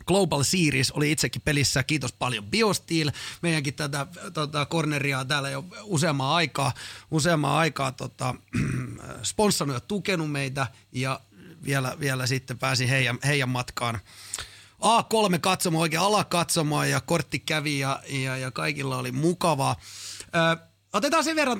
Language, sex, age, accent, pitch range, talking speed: Finnish, male, 30-49, native, 130-175 Hz, 140 wpm